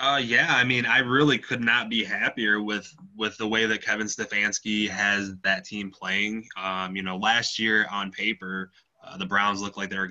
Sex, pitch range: male, 95-105 Hz